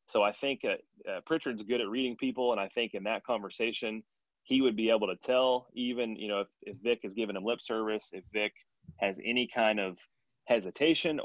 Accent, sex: American, male